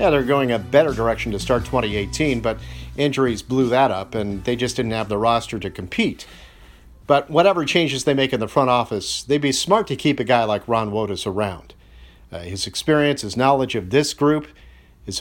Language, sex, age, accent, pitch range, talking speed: English, male, 50-69, American, 110-145 Hz, 205 wpm